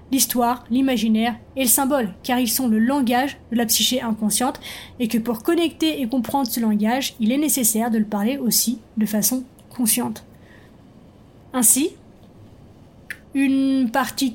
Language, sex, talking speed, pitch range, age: French, female, 145 wpm, 235-285 Hz, 20-39